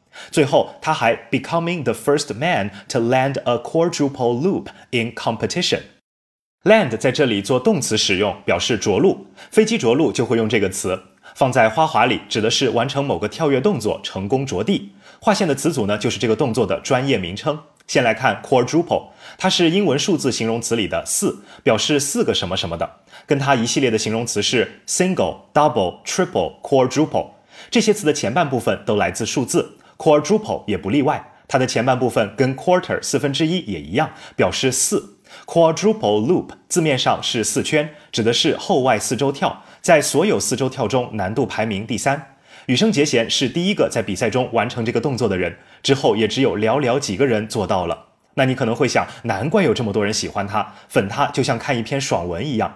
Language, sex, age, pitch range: Chinese, male, 30-49, 115-160 Hz